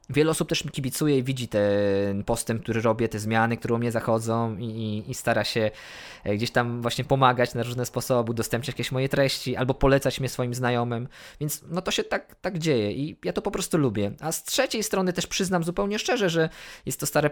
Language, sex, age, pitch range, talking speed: Polish, male, 20-39, 125-155 Hz, 215 wpm